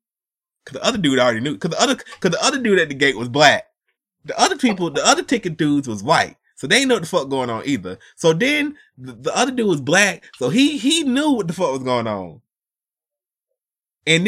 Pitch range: 150-230 Hz